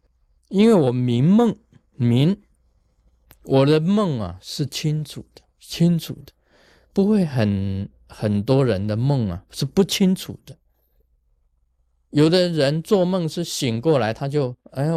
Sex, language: male, Chinese